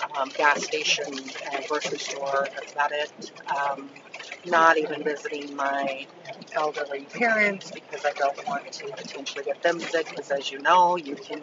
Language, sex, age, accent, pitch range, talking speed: English, female, 40-59, American, 140-160 Hz, 165 wpm